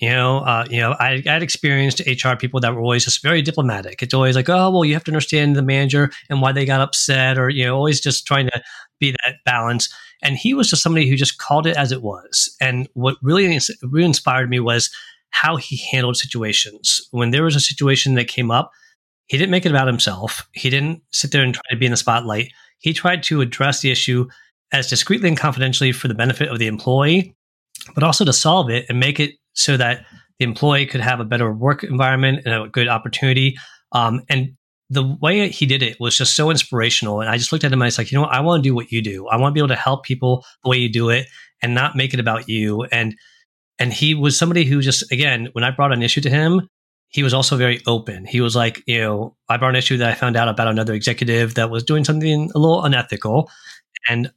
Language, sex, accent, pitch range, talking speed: English, male, American, 120-145 Hz, 245 wpm